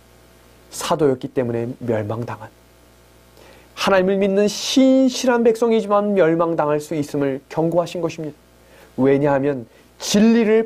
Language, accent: Korean, native